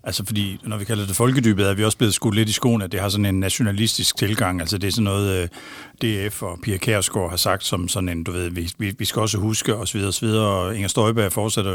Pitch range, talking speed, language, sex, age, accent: 100-120 Hz, 240 wpm, Danish, male, 60-79, native